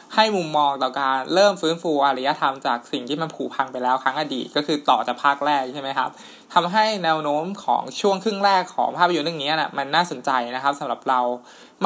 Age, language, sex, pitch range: 20-39, Thai, male, 140-175 Hz